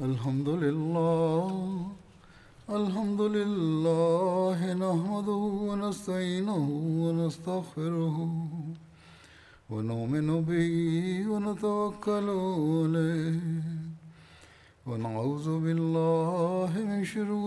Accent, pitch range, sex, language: native, 160-200 Hz, male, Tamil